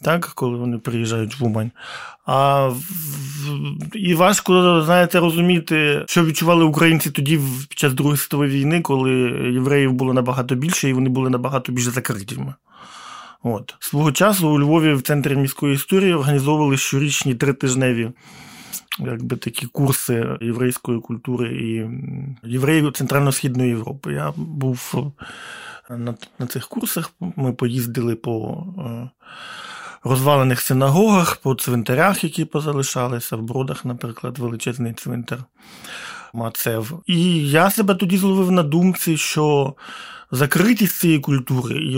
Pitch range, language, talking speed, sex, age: 125-165 Hz, Ukrainian, 125 wpm, male, 20-39